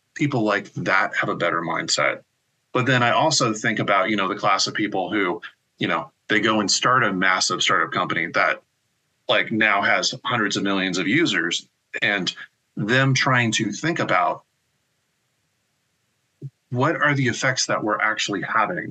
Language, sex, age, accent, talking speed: English, male, 30-49, American, 170 wpm